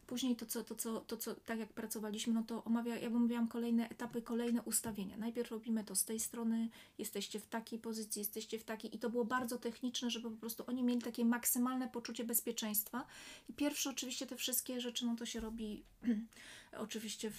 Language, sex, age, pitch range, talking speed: Polish, female, 30-49, 215-235 Hz, 195 wpm